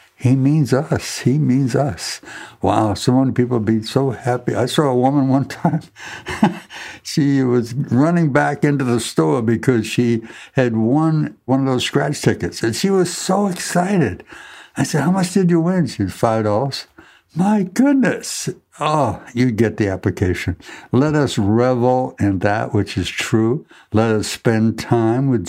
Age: 60-79